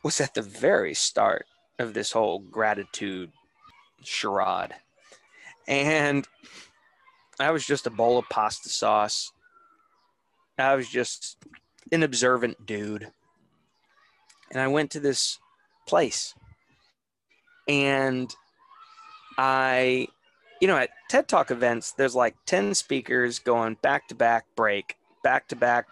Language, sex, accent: English, male, American